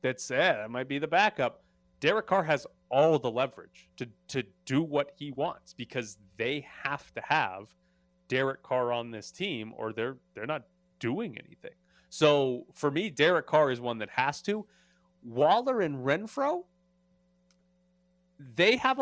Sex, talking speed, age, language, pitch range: male, 160 wpm, 30-49, English, 125-180 Hz